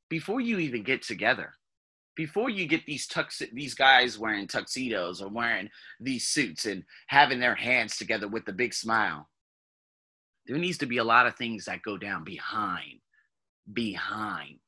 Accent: American